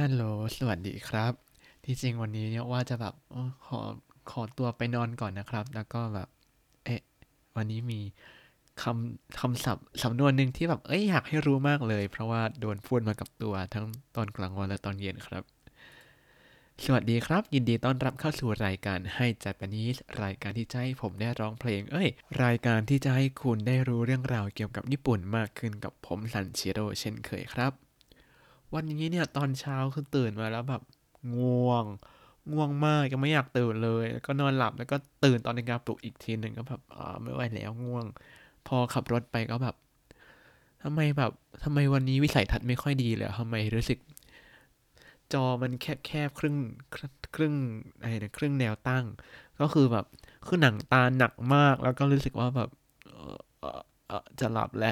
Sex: male